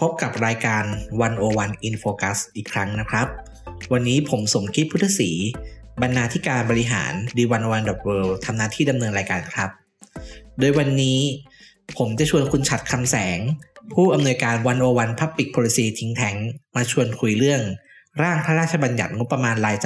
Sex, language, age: male, Thai, 20-39